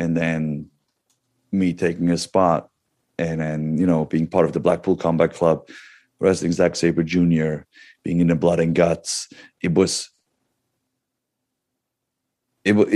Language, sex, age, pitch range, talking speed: English, male, 30-49, 85-100 Hz, 140 wpm